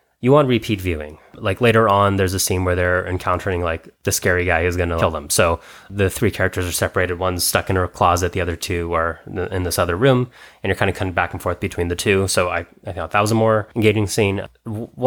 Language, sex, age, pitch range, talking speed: English, male, 20-39, 90-100 Hz, 255 wpm